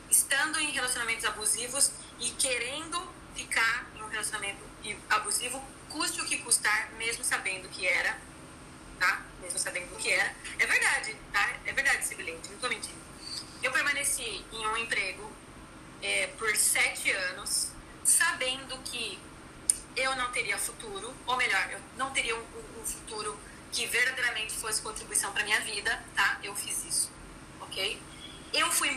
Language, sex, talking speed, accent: Portuguese, female, 145 wpm, Brazilian